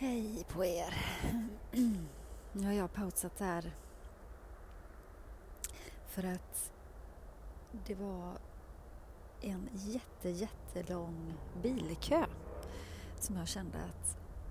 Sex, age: female, 30-49